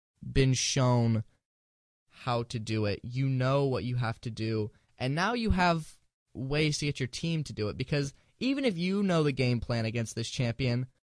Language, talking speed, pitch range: English, 195 wpm, 110-140 Hz